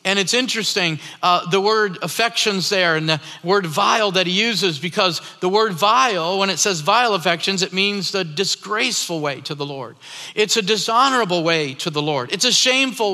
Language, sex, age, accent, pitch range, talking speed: English, male, 40-59, American, 190-235 Hz, 190 wpm